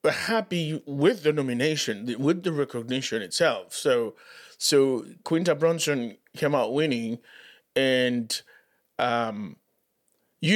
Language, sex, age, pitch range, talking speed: English, male, 30-49, 120-195 Hz, 100 wpm